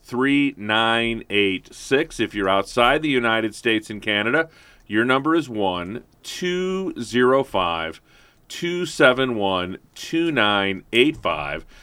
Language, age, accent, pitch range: English, 40-59, American, 95-125 Hz